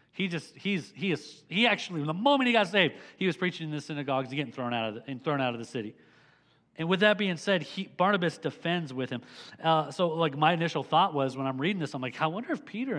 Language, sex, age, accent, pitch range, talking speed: English, male, 40-59, American, 140-185 Hz, 265 wpm